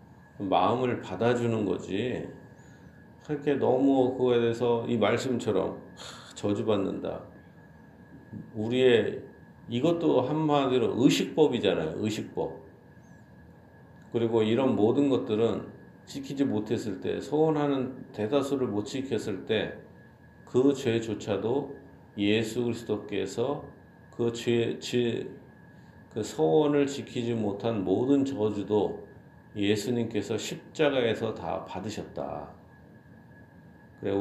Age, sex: 40-59, male